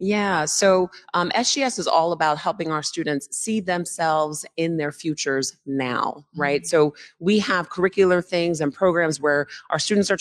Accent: American